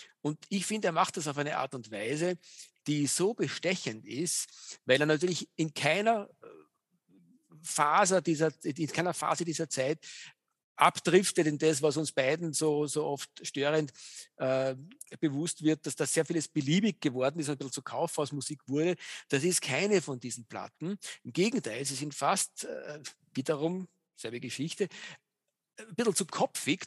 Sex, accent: male, German